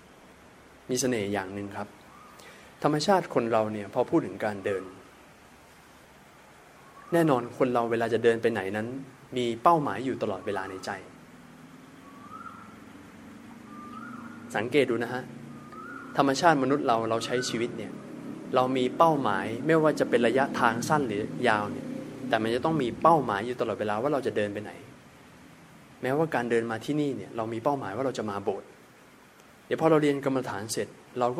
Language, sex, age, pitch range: Thai, male, 20-39, 110-145 Hz